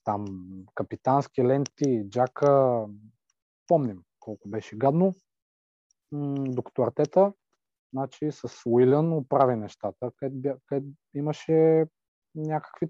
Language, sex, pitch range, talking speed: Bulgarian, male, 105-140 Hz, 90 wpm